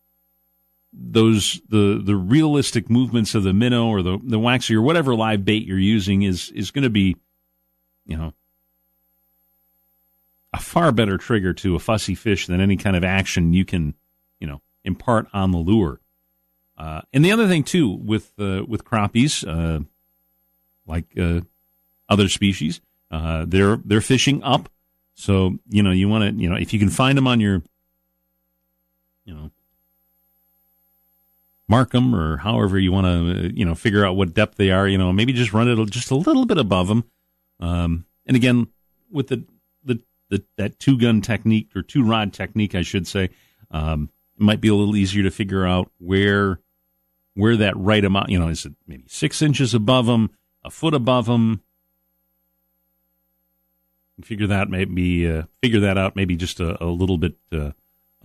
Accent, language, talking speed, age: American, English, 175 wpm, 40-59